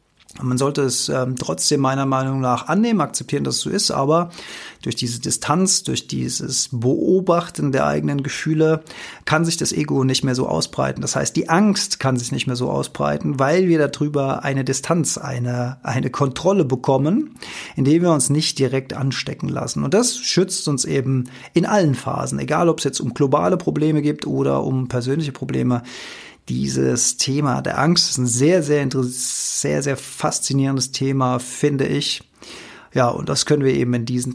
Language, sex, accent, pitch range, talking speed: German, male, German, 125-160 Hz, 175 wpm